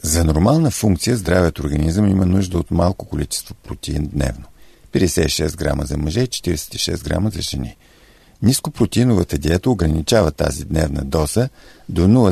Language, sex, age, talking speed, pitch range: Bulgarian, male, 50-69, 135 wpm, 85-115 Hz